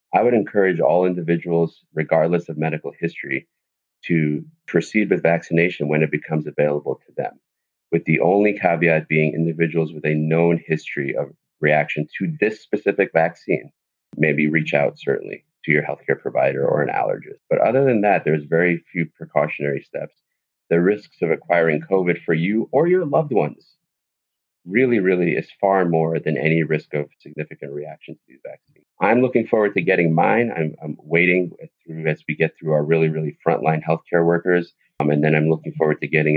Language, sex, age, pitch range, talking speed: English, male, 30-49, 75-85 Hz, 175 wpm